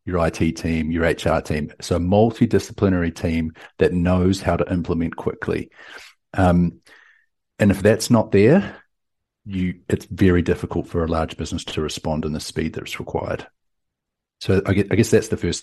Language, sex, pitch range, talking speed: English, male, 85-95 Hz, 175 wpm